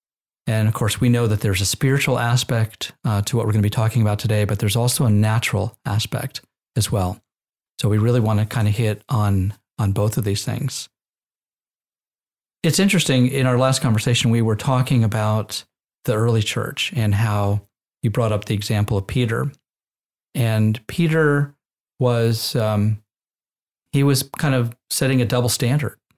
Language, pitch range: English, 105-125 Hz